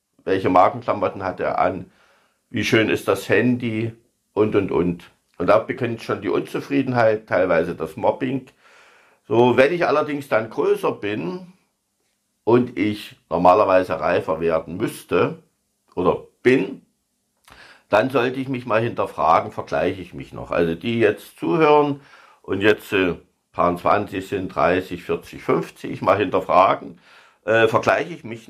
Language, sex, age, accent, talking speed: German, male, 60-79, German, 140 wpm